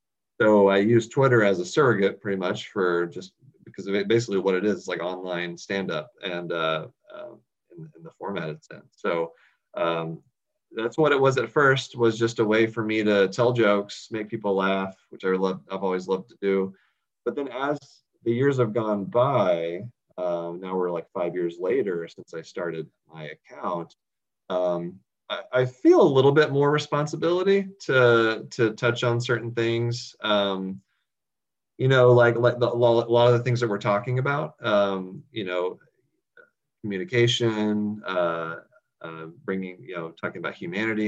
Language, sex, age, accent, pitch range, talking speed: English, male, 30-49, American, 95-120 Hz, 170 wpm